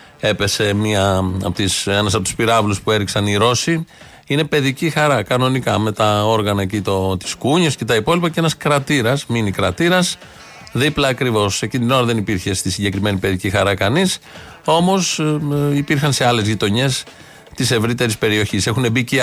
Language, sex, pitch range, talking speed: Greek, male, 110-145 Hz, 160 wpm